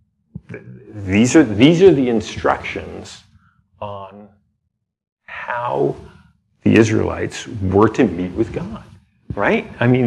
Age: 40-59